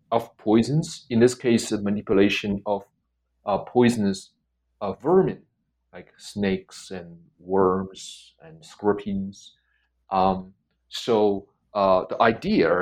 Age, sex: 30-49, male